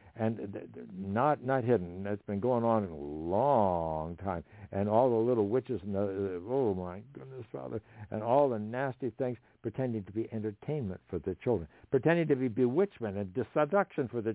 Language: English